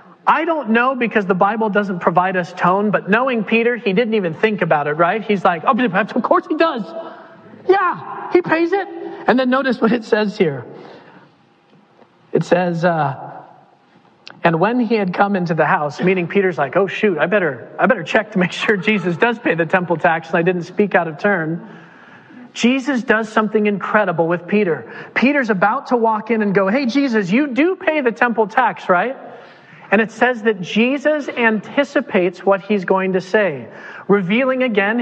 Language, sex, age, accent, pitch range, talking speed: English, male, 40-59, American, 185-240 Hz, 190 wpm